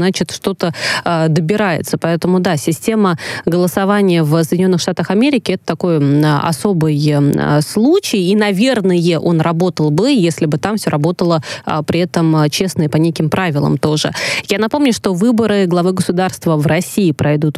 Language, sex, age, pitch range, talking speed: Russian, female, 20-39, 160-195 Hz, 145 wpm